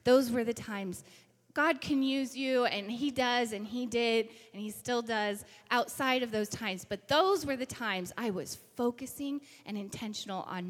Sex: female